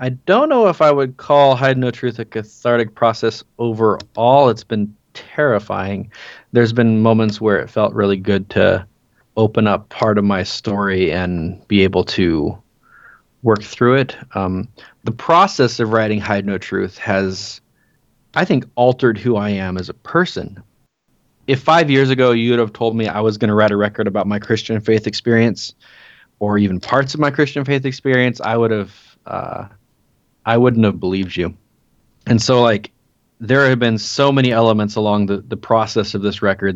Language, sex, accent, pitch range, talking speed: English, male, American, 100-120 Hz, 180 wpm